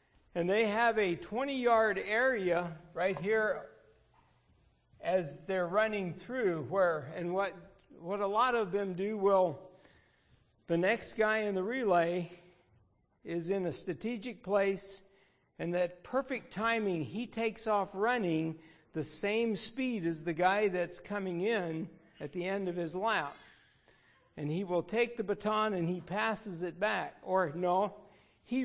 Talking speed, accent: 145 wpm, American